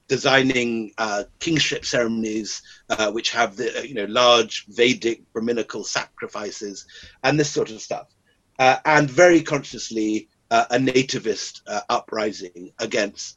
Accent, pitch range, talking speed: British, 110-150 Hz, 130 wpm